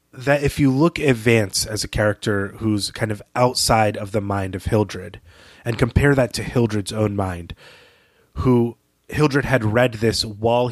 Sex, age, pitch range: male, 30-49, 100-125 Hz